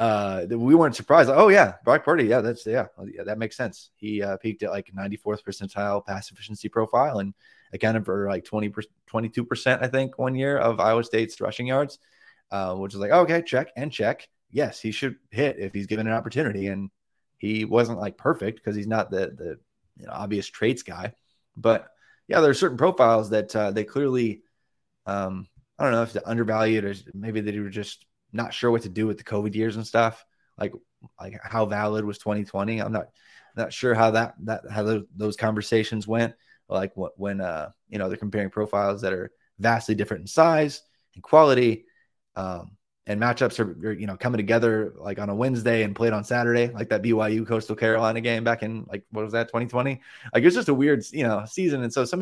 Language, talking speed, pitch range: English, 210 wpm, 105-115 Hz